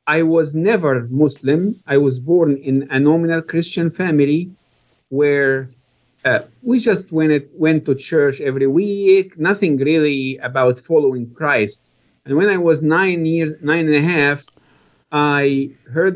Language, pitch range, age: English, 135-170 Hz, 50-69